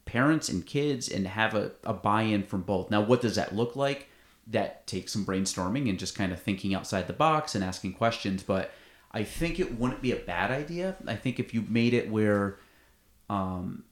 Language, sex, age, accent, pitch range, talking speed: English, male, 30-49, American, 95-120 Hz, 205 wpm